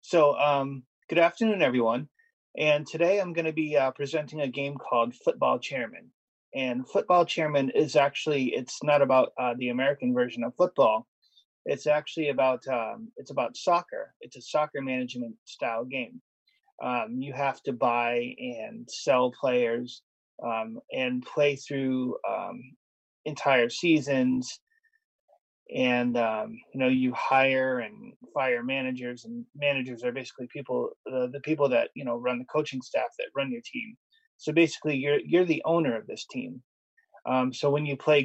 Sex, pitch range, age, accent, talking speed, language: male, 125-165 Hz, 30-49, American, 160 wpm, English